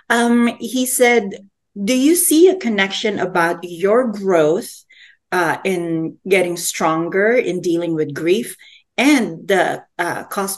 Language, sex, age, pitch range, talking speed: English, female, 40-59, 170-220 Hz, 130 wpm